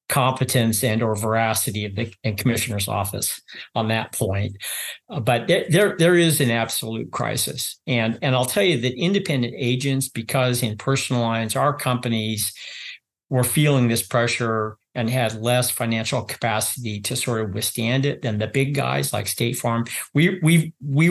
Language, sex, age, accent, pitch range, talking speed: English, male, 50-69, American, 115-140 Hz, 165 wpm